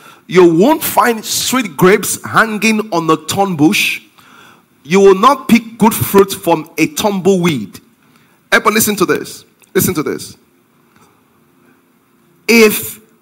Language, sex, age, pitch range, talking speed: English, male, 40-59, 175-235 Hz, 125 wpm